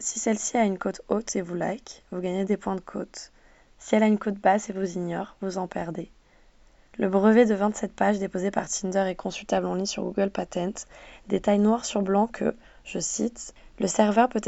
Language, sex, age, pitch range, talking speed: French, female, 20-39, 190-215 Hz, 215 wpm